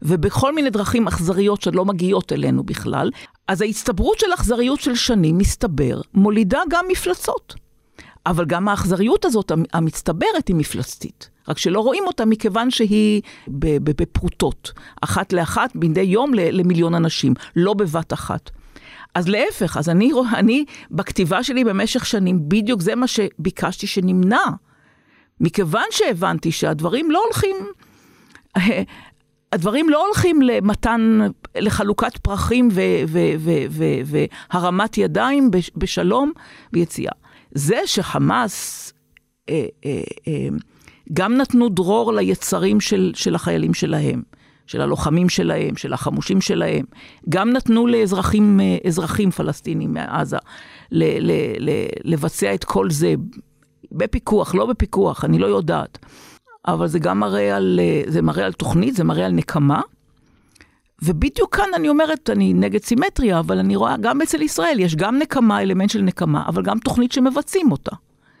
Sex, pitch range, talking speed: female, 180-245 Hz, 130 wpm